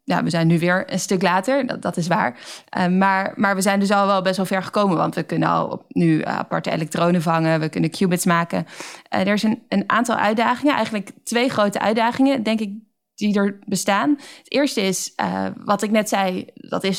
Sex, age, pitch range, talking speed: female, 20-39, 180-220 Hz, 220 wpm